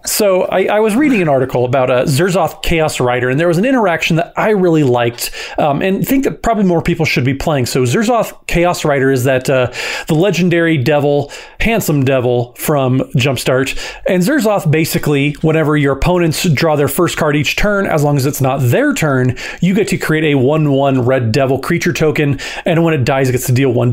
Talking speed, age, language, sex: 210 wpm, 30-49, English, male